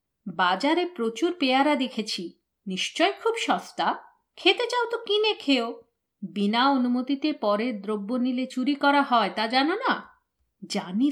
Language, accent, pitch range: Bengali, native, 215-295 Hz